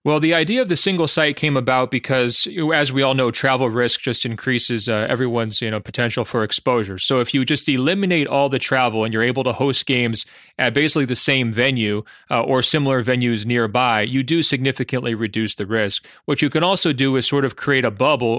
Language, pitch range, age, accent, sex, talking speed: English, 115-135 Hz, 30-49, American, male, 215 wpm